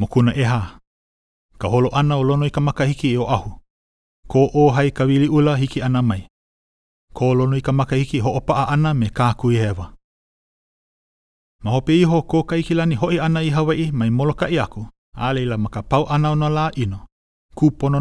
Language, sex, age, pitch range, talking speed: English, male, 30-49, 110-150 Hz, 145 wpm